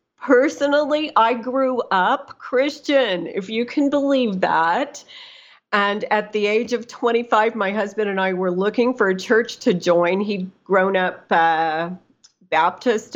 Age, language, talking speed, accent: 50-69, English, 145 wpm, American